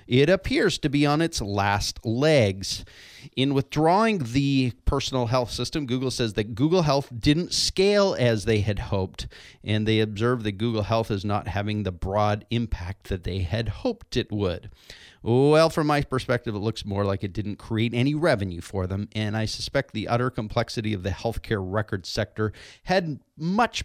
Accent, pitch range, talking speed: American, 105-135 Hz, 180 wpm